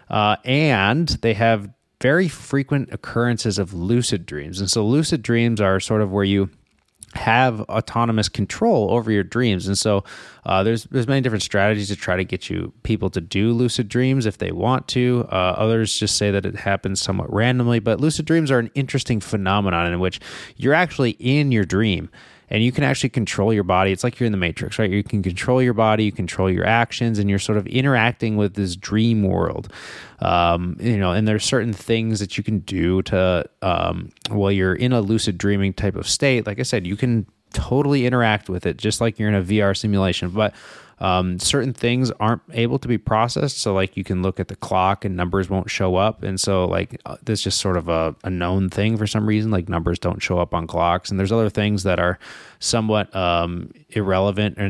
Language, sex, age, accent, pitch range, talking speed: English, male, 20-39, American, 95-115 Hz, 210 wpm